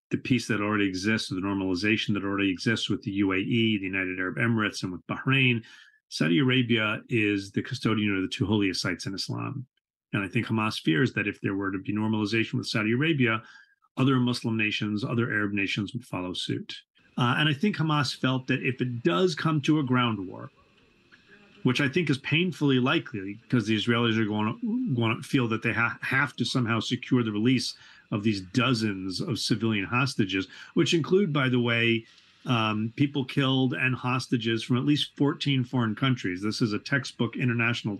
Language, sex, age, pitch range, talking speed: English, male, 40-59, 105-130 Hz, 195 wpm